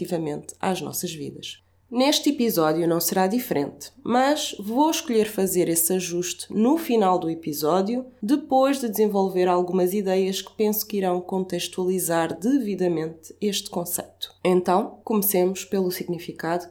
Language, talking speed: Portuguese, 130 wpm